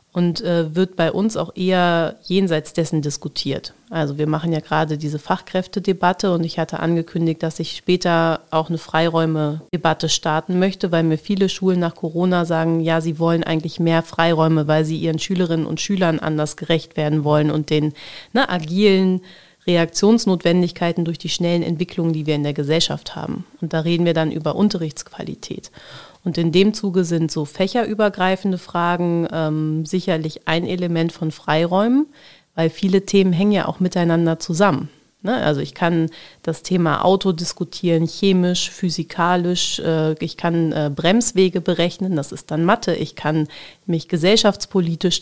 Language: German